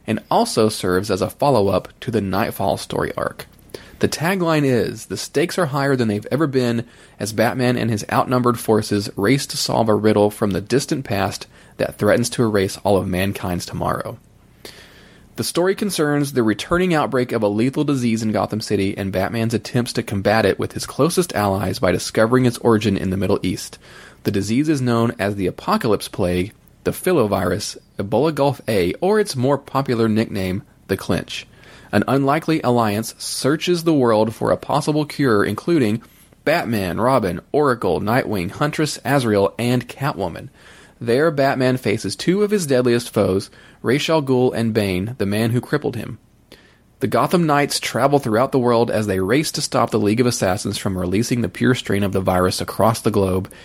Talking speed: 180 wpm